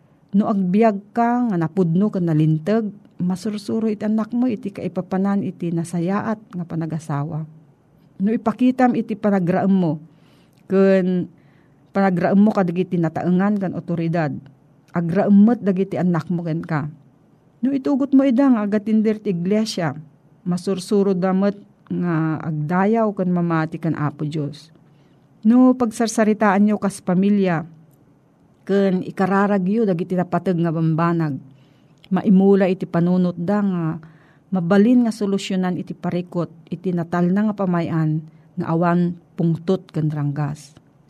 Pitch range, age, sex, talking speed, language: 160-205 Hz, 40-59, female, 120 wpm, Filipino